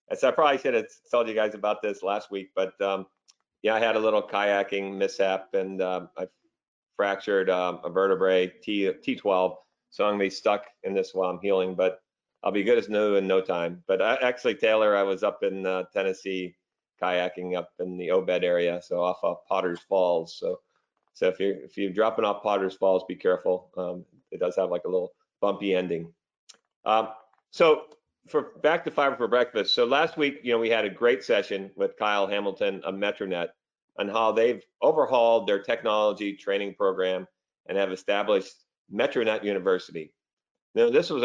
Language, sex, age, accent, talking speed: English, male, 40-59, American, 190 wpm